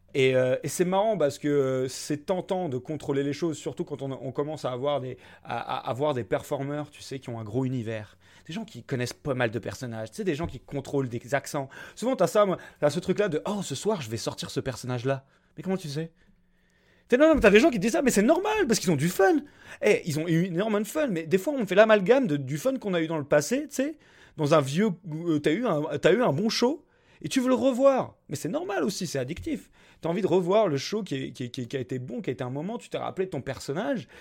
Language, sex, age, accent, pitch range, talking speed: French, male, 30-49, French, 135-200 Hz, 280 wpm